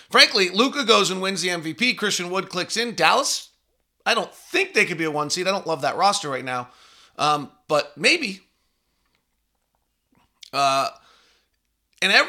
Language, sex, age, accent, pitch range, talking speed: English, male, 40-59, American, 155-200 Hz, 160 wpm